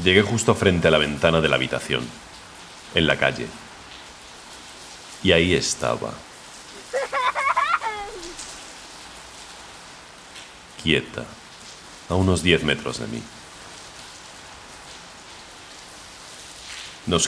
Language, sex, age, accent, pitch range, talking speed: Spanish, male, 40-59, Spanish, 75-95 Hz, 80 wpm